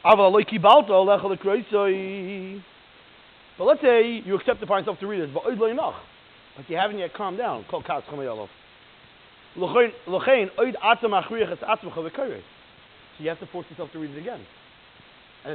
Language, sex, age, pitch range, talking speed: English, male, 30-49, 155-220 Hz, 105 wpm